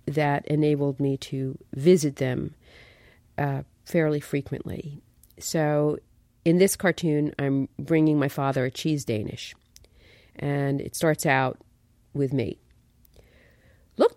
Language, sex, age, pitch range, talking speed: English, female, 40-59, 140-225 Hz, 115 wpm